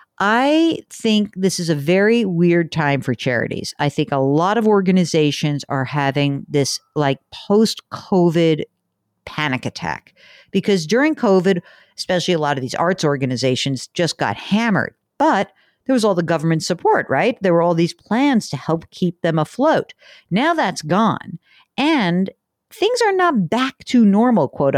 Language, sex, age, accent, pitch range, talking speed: English, female, 50-69, American, 145-205 Hz, 155 wpm